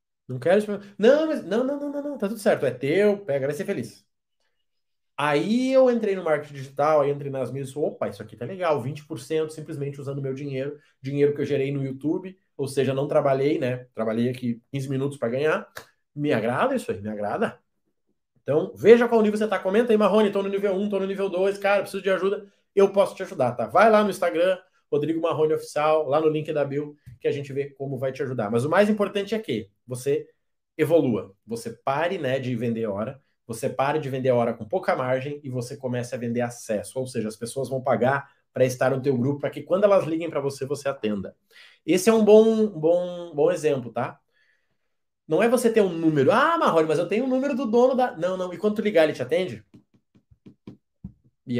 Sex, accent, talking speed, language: male, Brazilian, 225 wpm, Portuguese